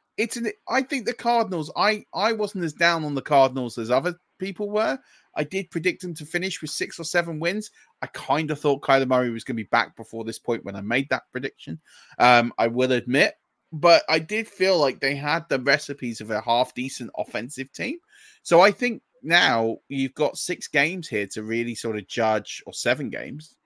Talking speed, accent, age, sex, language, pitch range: 210 wpm, British, 30-49, male, English, 115-180 Hz